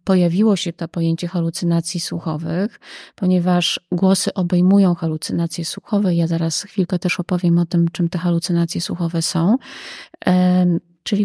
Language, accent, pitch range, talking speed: Polish, native, 175-215 Hz, 130 wpm